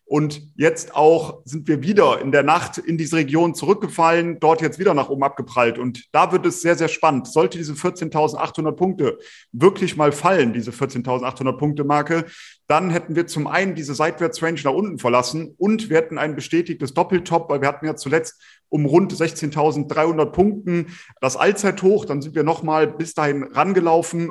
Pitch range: 140-165 Hz